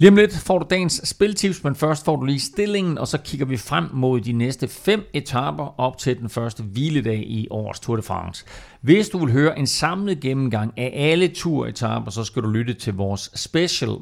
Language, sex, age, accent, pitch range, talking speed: Danish, male, 40-59, native, 105-130 Hz, 210 wpm